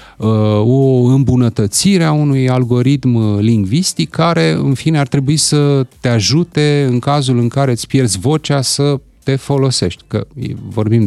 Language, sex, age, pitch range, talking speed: Romanian, male, 30-49, 95-125 Hz, 140 wpm